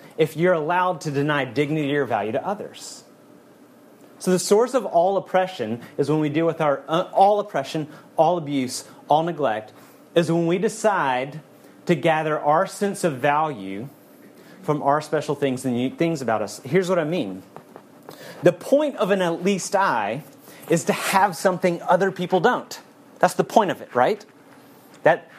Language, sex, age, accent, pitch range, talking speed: English, male, 30-49, American, 135-185 Hz, 170 wpm